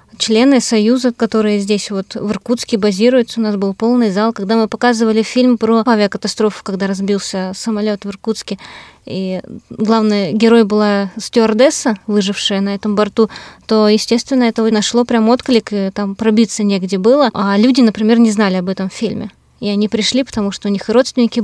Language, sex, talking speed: Russian, female, 175 wpm